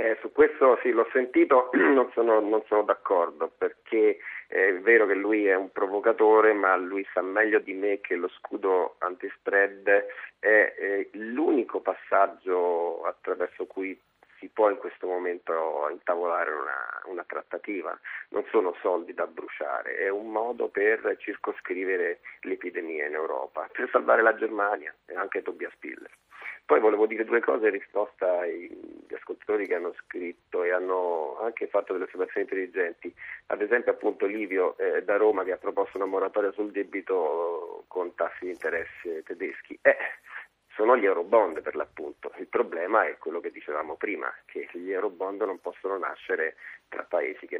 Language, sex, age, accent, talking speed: Italian, male, 40-59, native, 155 wpm